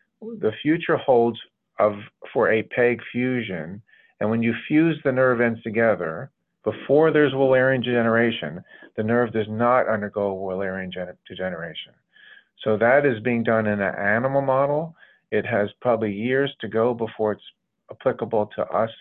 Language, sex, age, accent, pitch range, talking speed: English, male, 40-59, American, 105-125 Hz, 145 wpm